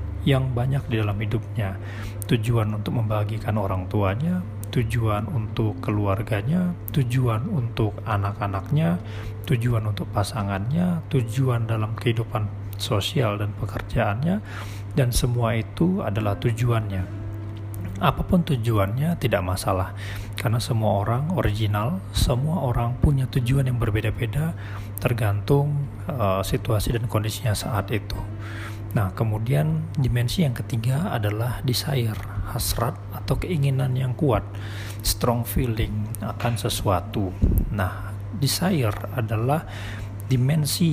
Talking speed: 105 wpm